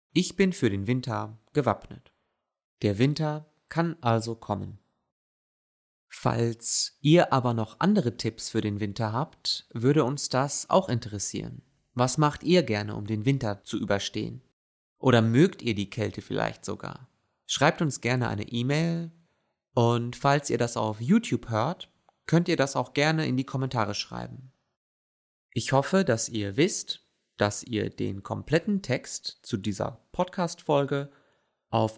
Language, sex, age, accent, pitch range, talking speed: German, male, 30-49, German, 110-145 Hz, 145 wpm